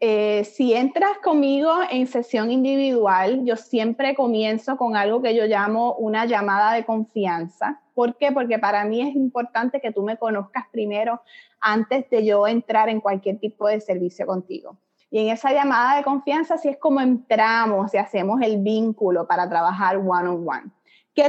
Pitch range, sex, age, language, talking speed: 205-275 Hz, female, 20-39, English, 170 wpm